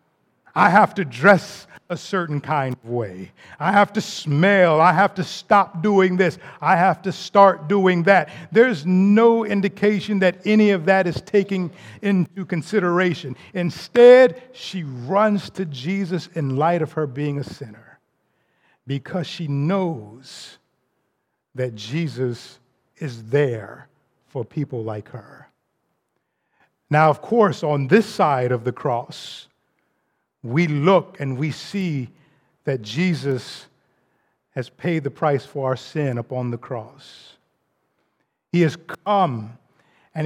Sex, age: male, 50-69